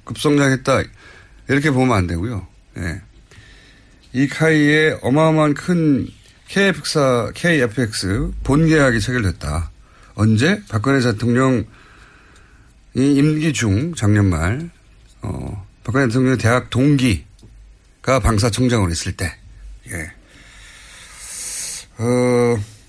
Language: Korean